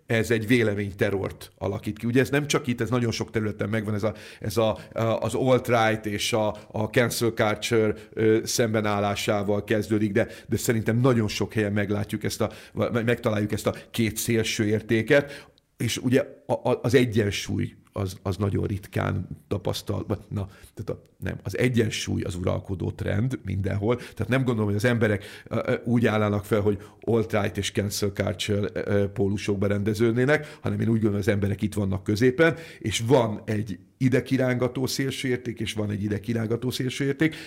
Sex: male